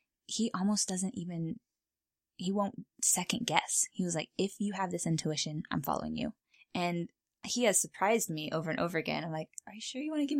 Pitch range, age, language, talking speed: 155-200 Hz, 20-39, English, 215 wpm